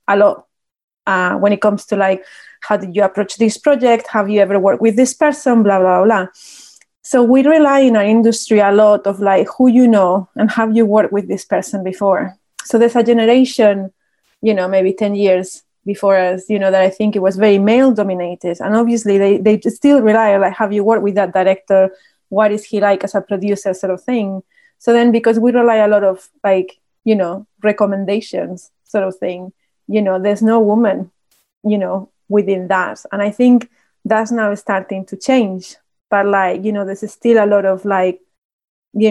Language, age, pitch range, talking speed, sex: English, 30-49, 195-220 Hz, 200 wpm, female